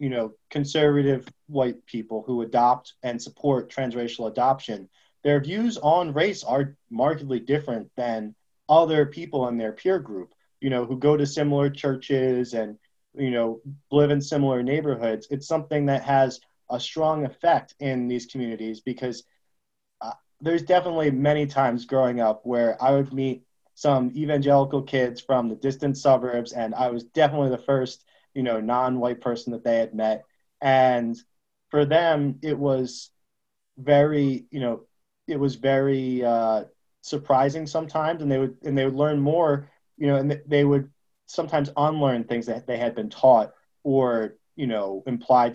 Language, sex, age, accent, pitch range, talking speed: English, male, 20-39, American, 120-145 Hz, 160 wpm